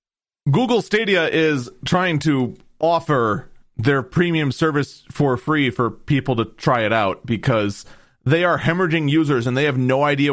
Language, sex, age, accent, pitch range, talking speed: English, male, 30-49, American, 125-185 Hz, 155 wpm